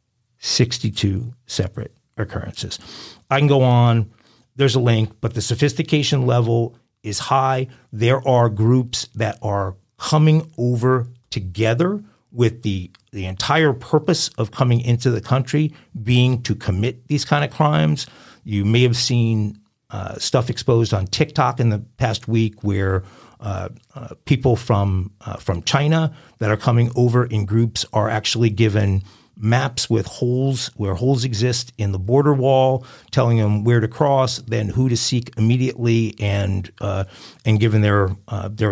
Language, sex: English, male